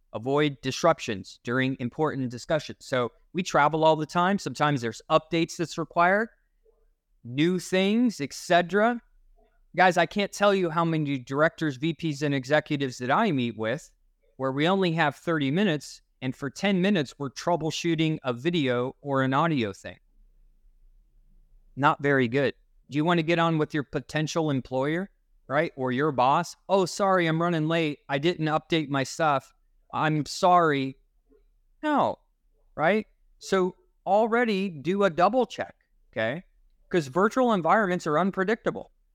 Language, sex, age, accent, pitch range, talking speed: English, male, 30-49, American, 140-185 Hz, 145 wpm